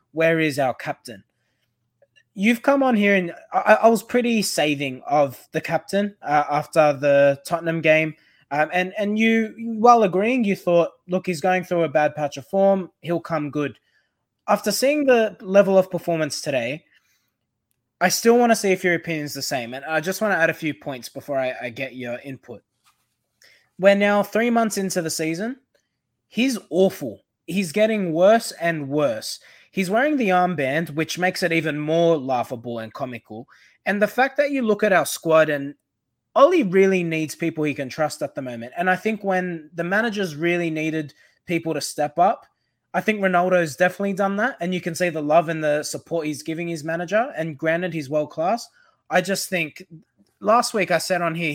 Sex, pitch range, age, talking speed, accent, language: male, 150-195 Hz, 20-39, 195 wpm, Australian, English